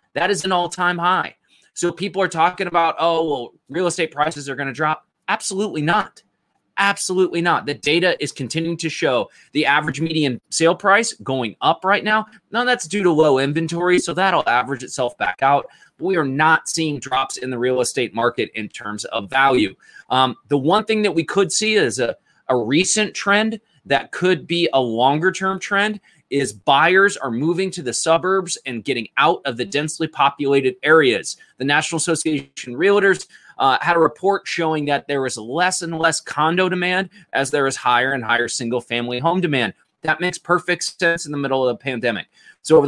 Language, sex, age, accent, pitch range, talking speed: English, male, 20-39, American, 145-185 Hz, 190 wpm